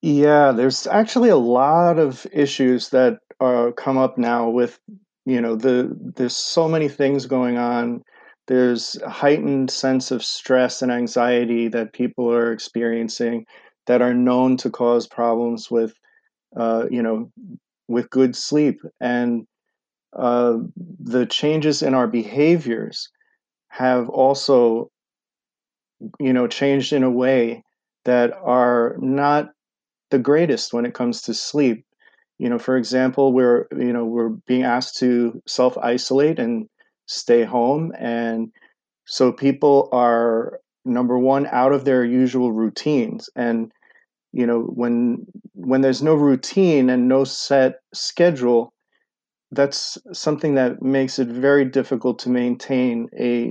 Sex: male